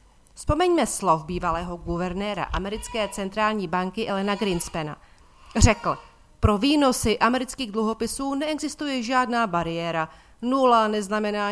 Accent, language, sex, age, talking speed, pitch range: native, Czech, female, 40-59, 100 wpm, 180-245 Hz